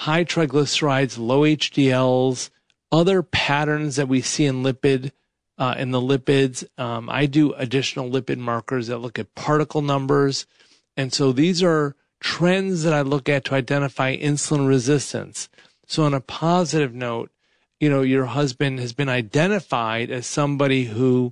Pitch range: 125-150 Hz